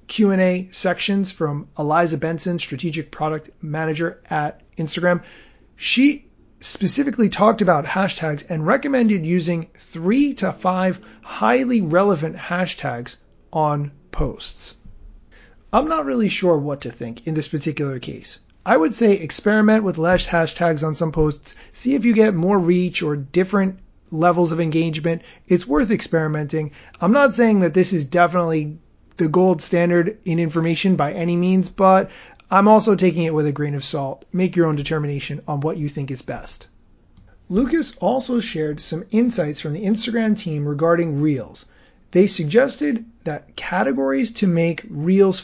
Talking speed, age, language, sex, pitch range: 150 wpm, 30-49, English, male, 155-195 Hz